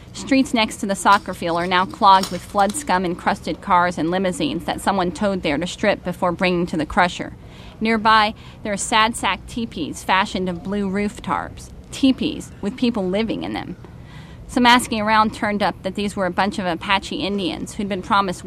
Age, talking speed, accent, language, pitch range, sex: 30-49, 190 wpm, American, English, 180-220 Hz, female